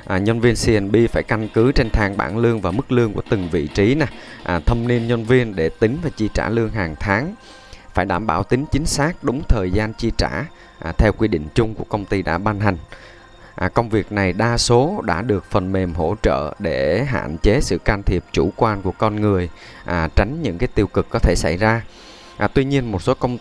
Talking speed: 240 wpm